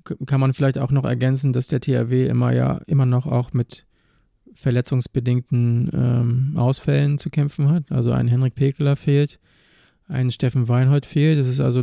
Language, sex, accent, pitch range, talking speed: German, male, German, 130-145 Hz, 165 wpm